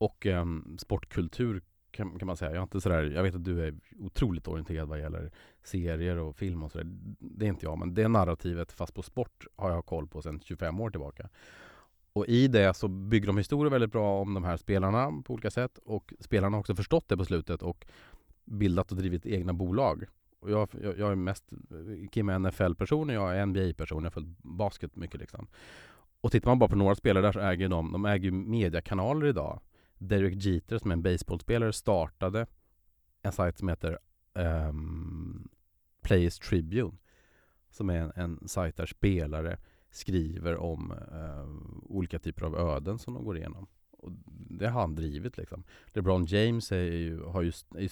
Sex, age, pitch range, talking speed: male, 30-49, 80-105 Hz, 195 wpm